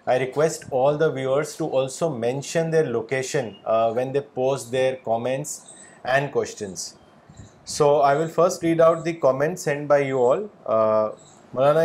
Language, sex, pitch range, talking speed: Urdu, male, 140-170 Hz, 155 wpm